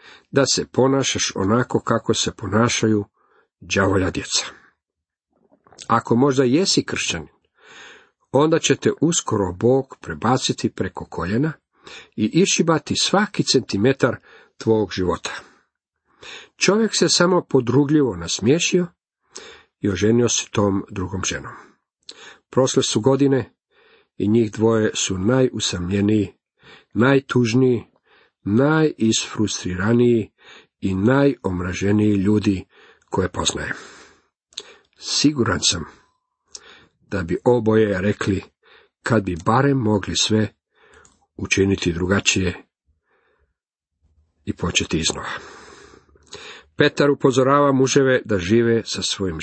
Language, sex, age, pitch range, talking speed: Croatian, male, 50-69, 100-135 Hz, 90 wpm